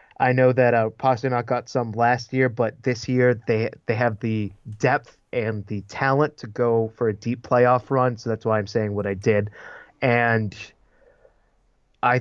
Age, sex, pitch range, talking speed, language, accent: 30-49, male, 110-125 Hz, 180 wpm, English, American